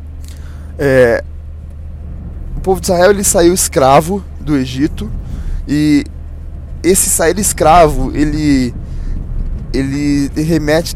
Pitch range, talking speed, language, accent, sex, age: 125-175 Hz, 80 wpm, Portuguese, Brazilian, male, 10-29